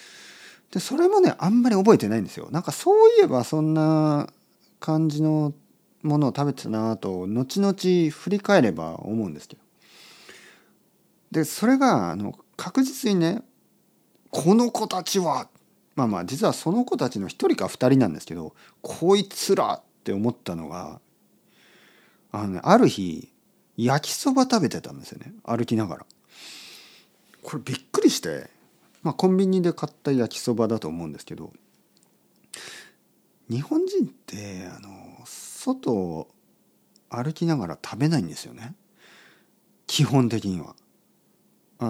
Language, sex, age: Japanese, male, 40-59